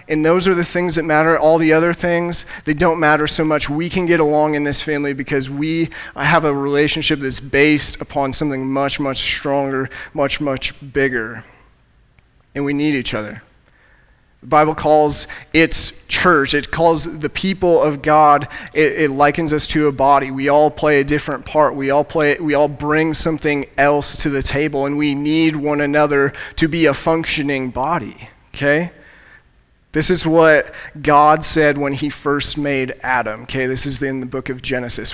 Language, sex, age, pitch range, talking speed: English, male, 30-49, 140-160 Hz, 185 wpm